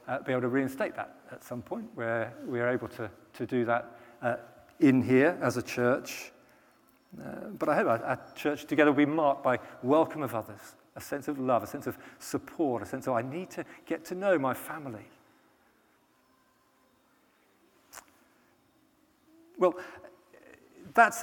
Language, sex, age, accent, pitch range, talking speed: English, male, 40-59, British, 130-210 Hz, 165 wpm